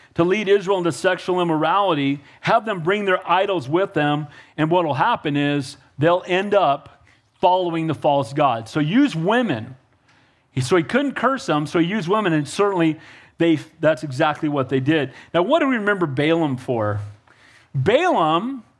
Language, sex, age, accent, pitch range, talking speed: English, male, 40-59, American, 150-240 Hz, 170 wpm